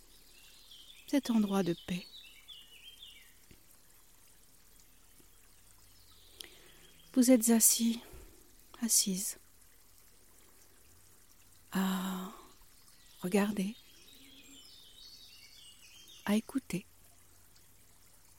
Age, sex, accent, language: 60-79, female, French, French